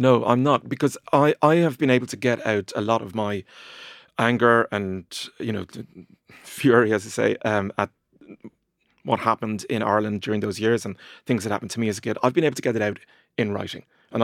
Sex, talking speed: male, 220 wpm